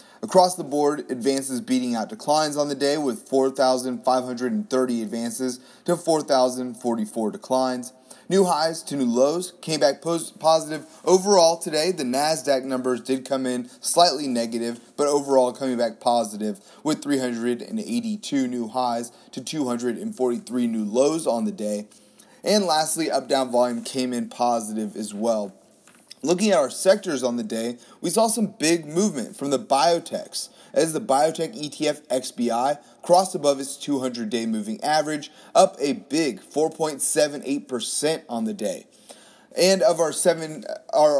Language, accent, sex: English, American, male